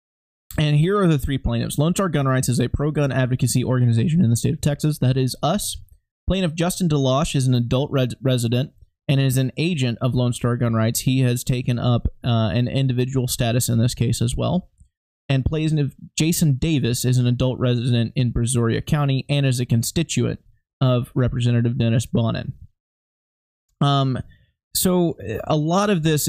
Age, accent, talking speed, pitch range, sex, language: 20-39, American, 175 wpm, 120-140 Hz, male, English